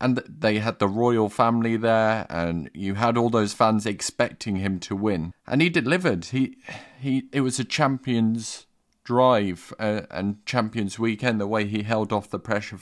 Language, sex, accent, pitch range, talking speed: English, male, British, 100-120 Hz, 180 wpm